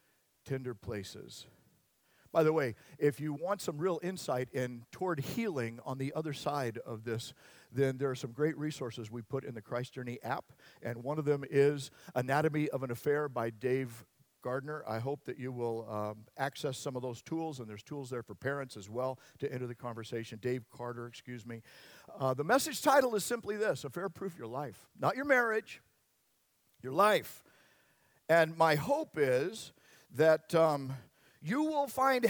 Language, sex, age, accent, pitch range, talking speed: English, male, 50-69, American, 120-180 Hz, 180 wpm